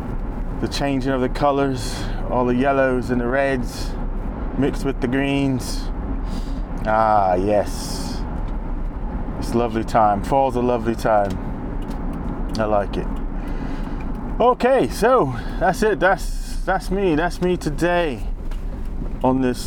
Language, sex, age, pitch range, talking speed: English, male, 20-39, 115-165 Hz, 120 wpm